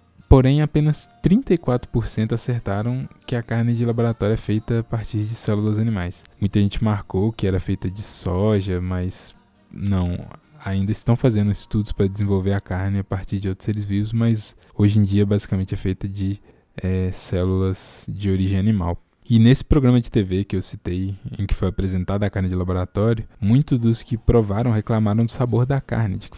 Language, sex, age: Portuguese, male, 20-39